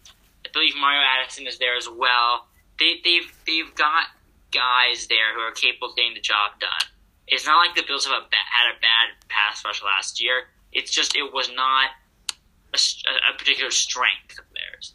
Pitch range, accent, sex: 120-150 Hz, American, male